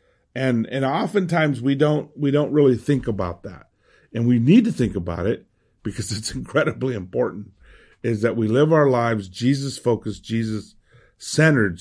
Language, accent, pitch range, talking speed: English, American, 115-155 Hz, 165 wpm